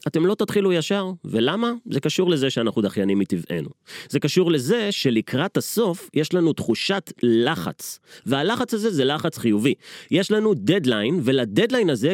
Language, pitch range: Hebrew, 140-210 Hz